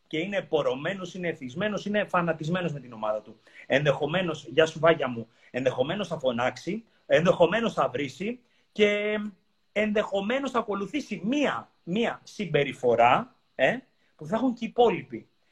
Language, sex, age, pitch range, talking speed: Greek, male, 30-49, 150-210 Hz, 140 wpm